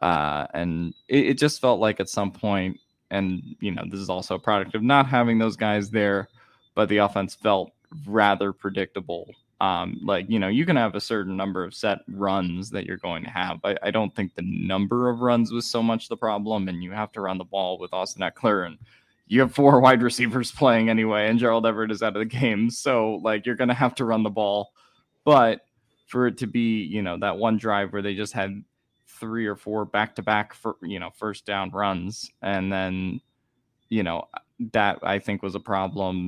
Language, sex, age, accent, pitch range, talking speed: English, male, 20-39, American, 95-115 Hz, 220 wpm